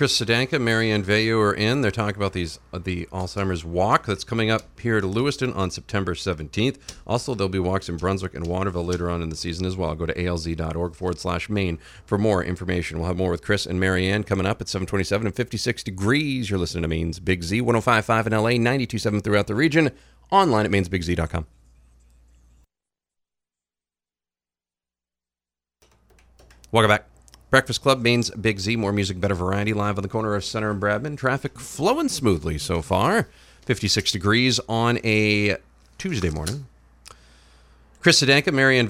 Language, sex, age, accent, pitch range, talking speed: English, male, 40-59, American, 85-110 Hz, 170 wpm